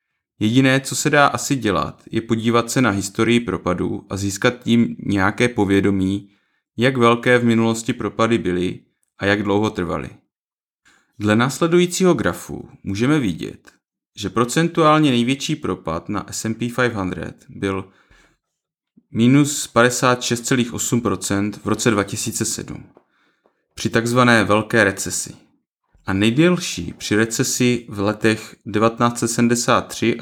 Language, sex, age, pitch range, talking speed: Czech, male, 30-49, 100-125 Hz, 110 wpm